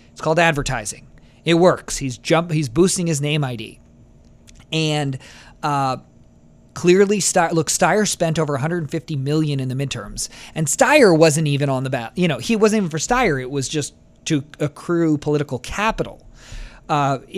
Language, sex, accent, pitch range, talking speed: English, male, American, 130-175 Hz, 160 wpm